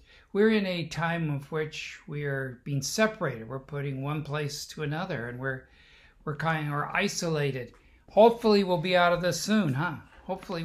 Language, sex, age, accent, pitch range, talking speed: English, male, 60-79, American, 125-175 Hz, 175 wpm